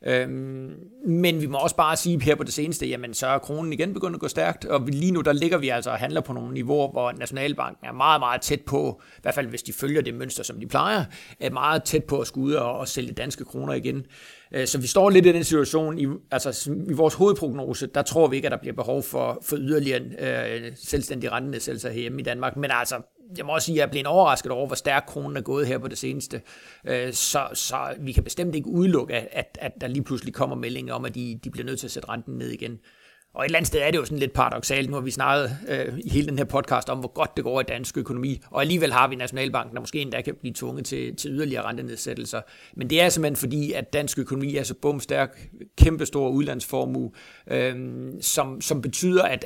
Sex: male